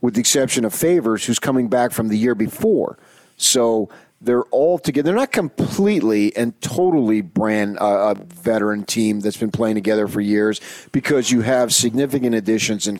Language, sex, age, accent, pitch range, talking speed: English, male, 40-59, American, 105-135 Hz, 175 wpm